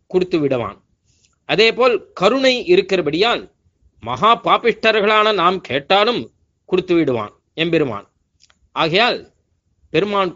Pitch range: 150-215 Hz